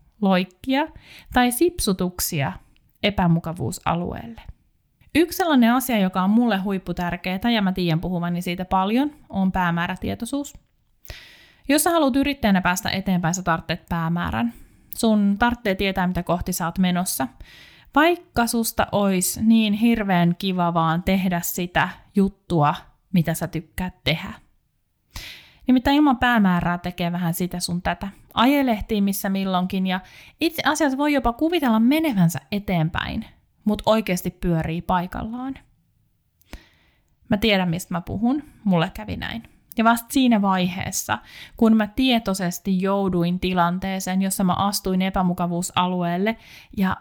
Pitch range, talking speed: 175-230 Hz, 120 wpm